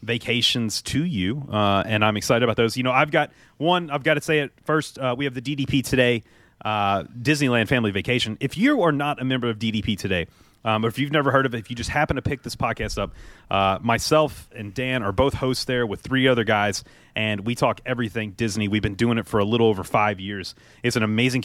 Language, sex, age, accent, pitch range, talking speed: English, male, 30-49, American, 105-135 Hz, 240 wpm